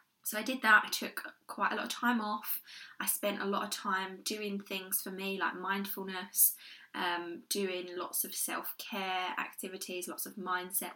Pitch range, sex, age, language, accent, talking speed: 185-230 Hz, female, 20-39, English, British, 180 wpm